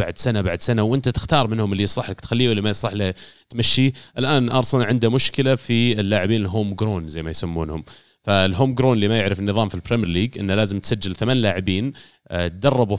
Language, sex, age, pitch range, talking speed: Arabic, male, 30-49, 95-130 Hz, 195 wpm